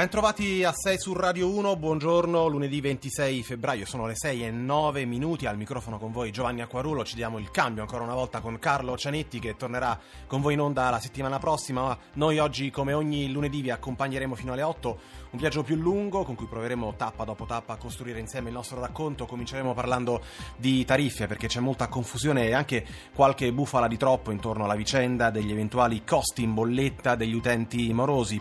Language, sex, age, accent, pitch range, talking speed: Italian, male, 30-49, native, 115-140 Hz, 195 wpm